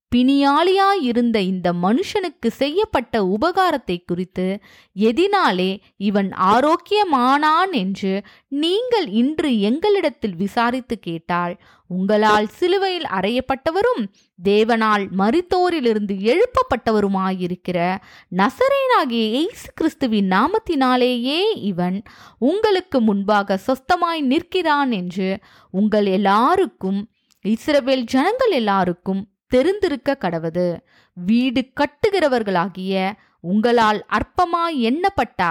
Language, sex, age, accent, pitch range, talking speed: Tamil, female, 20-39, native, 195-320 Hz, 75 wpm